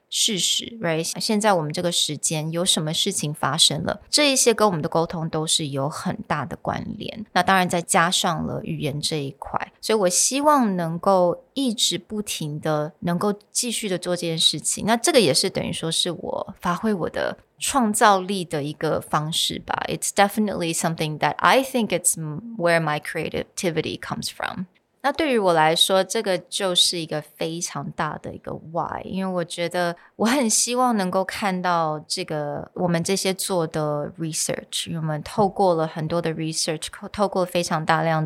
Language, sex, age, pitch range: Chinese, female, 20-39, 160-205 Hz